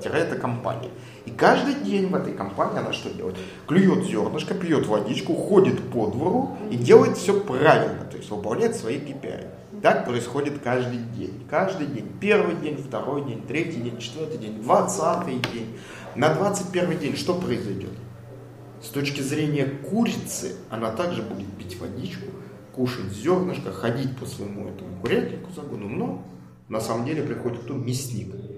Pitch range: 115-170 Hz